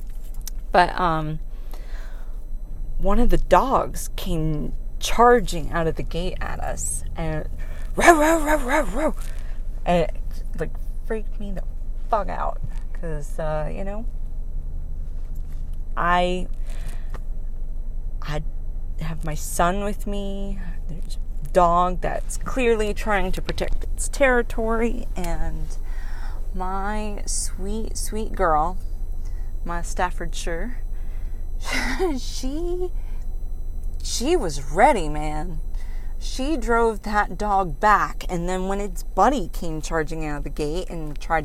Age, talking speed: 30-49, 110 wpm